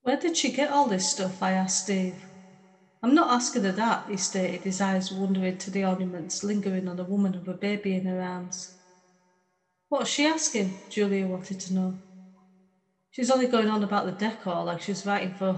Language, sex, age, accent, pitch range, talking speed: English, female, 30-49, British, 185-220 Hz, 200 wpm